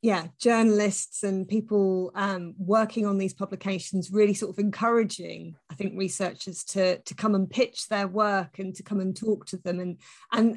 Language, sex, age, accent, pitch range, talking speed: English, female, 30-49, British, 180-220 Hz, 180 wpm